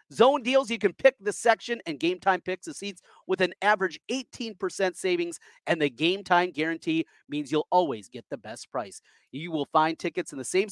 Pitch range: 165-230 Hz